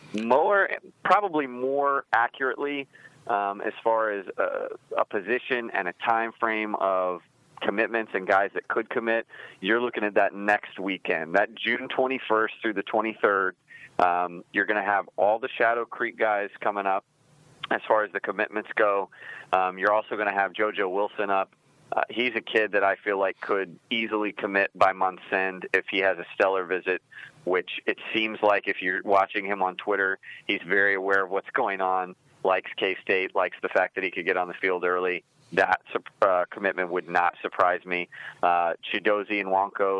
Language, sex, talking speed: English, male, 185 wpm